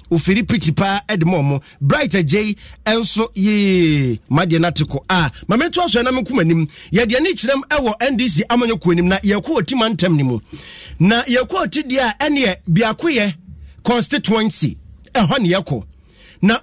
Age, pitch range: 30-49, 195-275 Hz